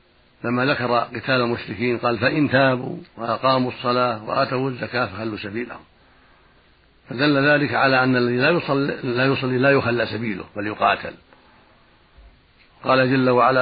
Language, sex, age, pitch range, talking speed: Arabic, male, 60-79, 115-130 Hz, 125 wpm